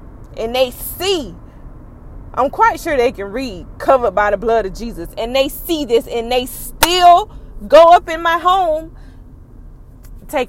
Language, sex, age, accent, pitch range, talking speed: English, female, 20-39, American, 190-260 Hz, 160 wpm